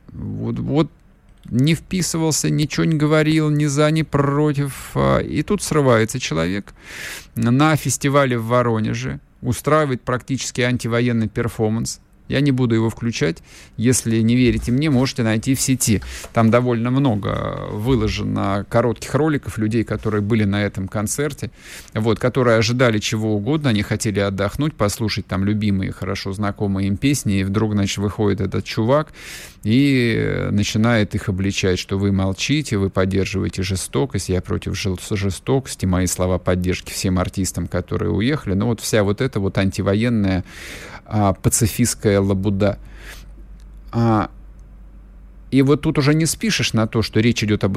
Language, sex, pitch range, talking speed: Russian, male, 100-130 Hz, 140 wpm